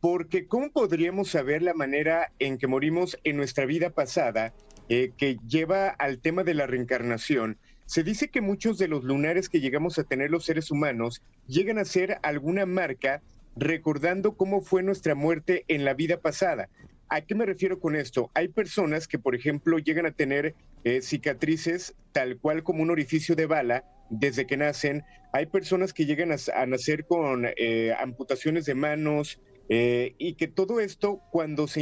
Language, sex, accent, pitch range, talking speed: Spanish, male, Mexican, 140-180 Hz, 175 wpm